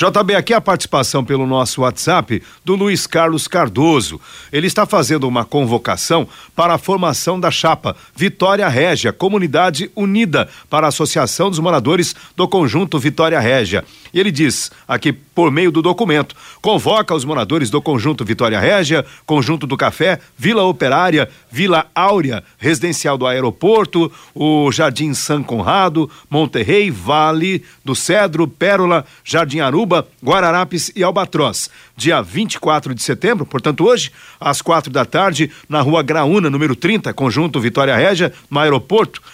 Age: 50-69